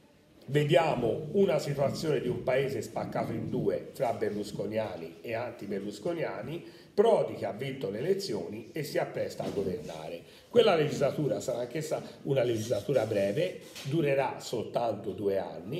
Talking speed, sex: 135 wpm, male